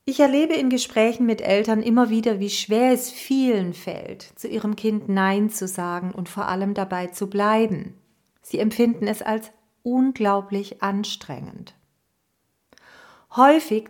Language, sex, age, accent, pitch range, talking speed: German, female, 40-59, German, 185-235 Hz, 140 wpm